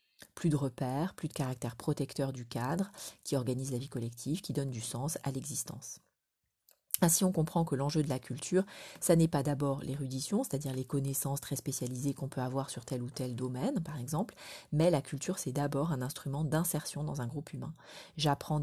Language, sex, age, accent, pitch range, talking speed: French, female, 30-49, French, 135-160 Hz, 195 wpm